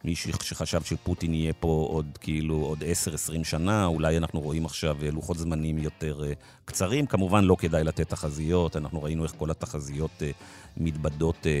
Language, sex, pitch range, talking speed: Hebrew, male, 75-90 Hz, 150 wpm